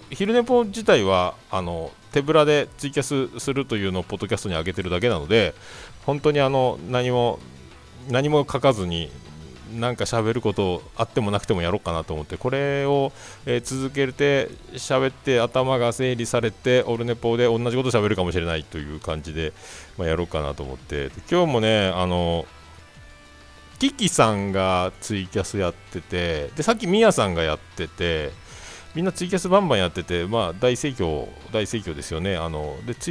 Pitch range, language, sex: 85-130 Hz, Japanese, male